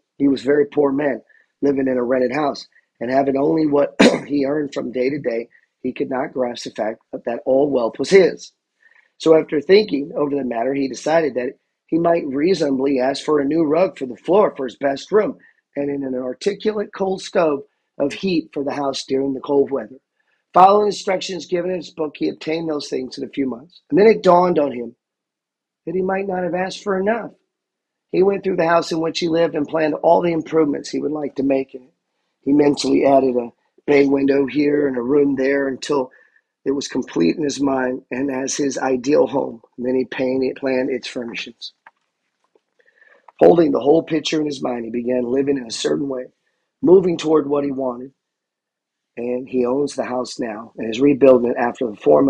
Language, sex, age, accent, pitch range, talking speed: English, male, 40-59, American, 130-160 Hz, 210 wpm